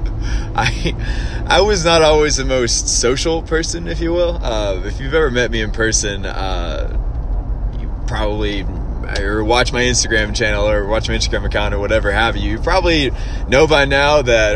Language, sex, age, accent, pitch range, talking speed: English, male, 20-39, American, 90-110 Hz, 175 wpm